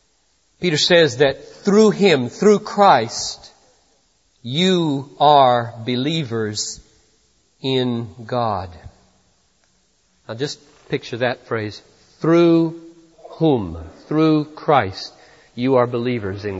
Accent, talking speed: American, 90 wpm